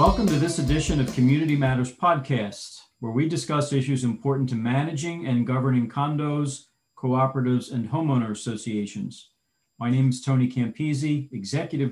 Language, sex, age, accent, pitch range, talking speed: English, male, 40-59, American, 120-145 Hz, 140 wpm